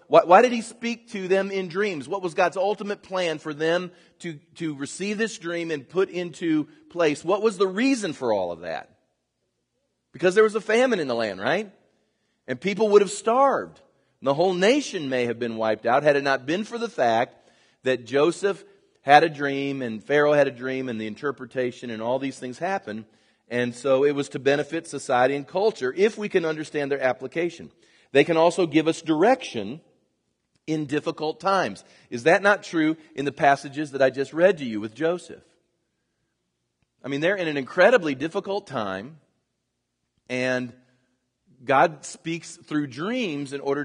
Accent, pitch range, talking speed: American, 125-180 Hz, 185 wpm